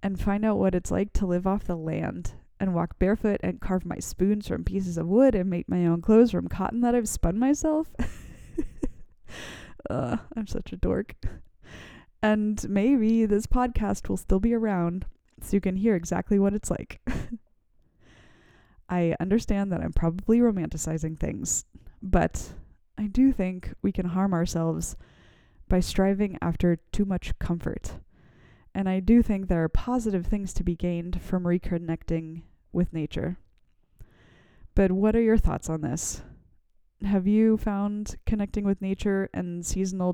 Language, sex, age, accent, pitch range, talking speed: English, female, 20-39, American, 170-210 Hz, 155 wpm